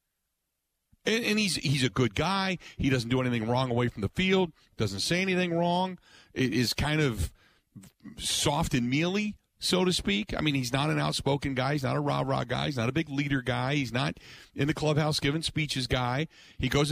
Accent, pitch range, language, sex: American, 125-175 Hz, English, male